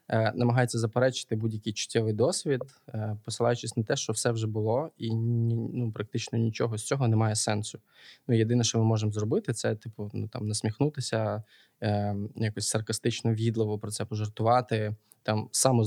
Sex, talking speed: male, 150 wpm